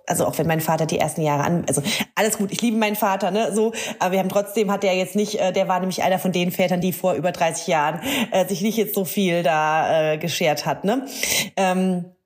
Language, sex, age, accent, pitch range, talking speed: German, female, 30-49, German, 180-220 Hz, 250 wpm